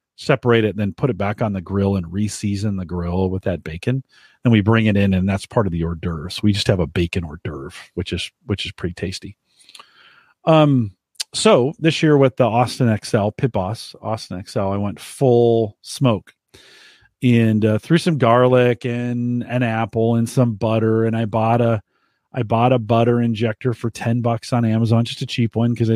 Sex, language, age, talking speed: male, English, 40-59, 205 wpm